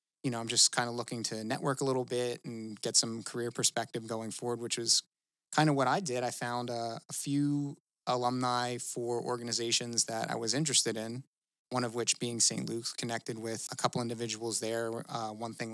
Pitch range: 115-130 Hz